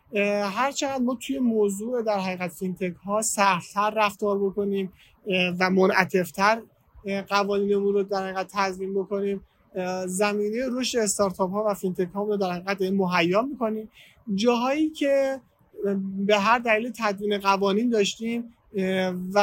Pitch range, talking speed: 190-220 Hz, 120 wpm